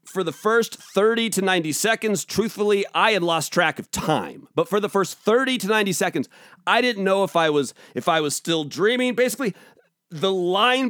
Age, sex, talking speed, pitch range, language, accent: 30-49, male, 200 wpm, 170-235 Hz, English, American